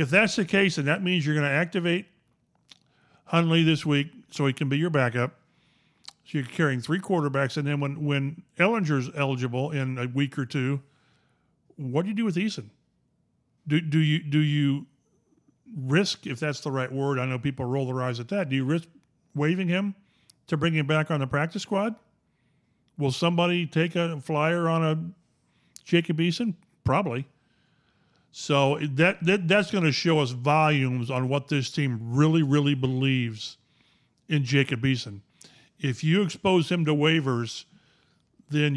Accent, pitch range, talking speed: American, 135-165 Hz, 170 wpm